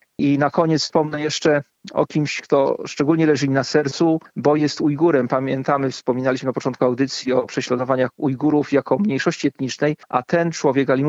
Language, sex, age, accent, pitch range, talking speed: Polish, male, 40-59, native, 125-150 Hz, 160 wpm